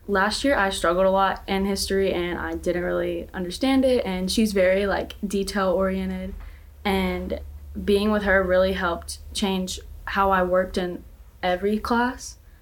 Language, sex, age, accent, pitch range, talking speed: English, female, 10-29, American, 180-200 Hz, 155 wpm